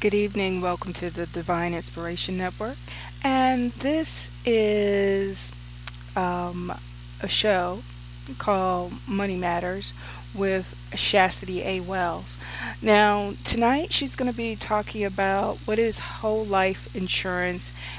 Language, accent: English, American